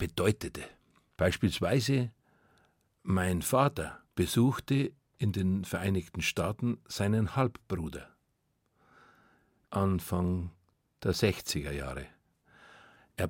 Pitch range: 90-130 Hz